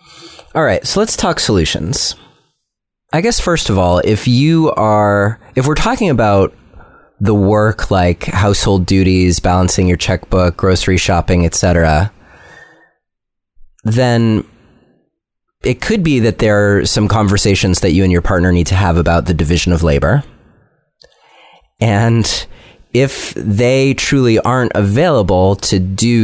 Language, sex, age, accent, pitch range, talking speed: English, male, 30-49, American, 95-115 Hz, 135 wpm